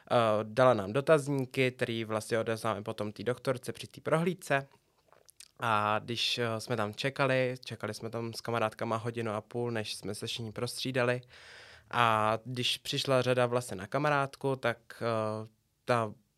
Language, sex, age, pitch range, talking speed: Czech, male, 20-39, 115-130 Hz, 140 wpm